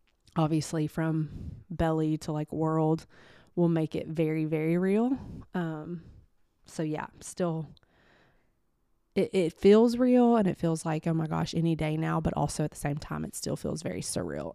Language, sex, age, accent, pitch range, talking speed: English, female, 20-39, American, 155-175 Hz, 170 wpm